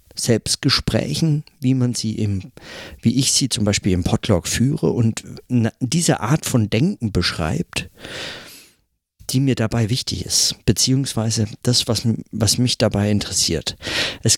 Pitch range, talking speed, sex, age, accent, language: 95-130 Hz, 135 wpm, male, 50-69, German, German